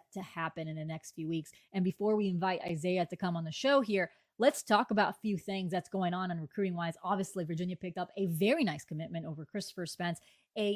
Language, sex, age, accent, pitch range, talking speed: English, female, 20-39, American, 170-200 Hz, 235 wpm